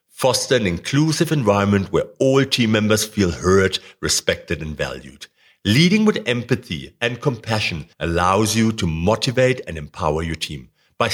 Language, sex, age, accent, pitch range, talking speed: English, male, 60-79, German, 95-135 Hz, 145 wpm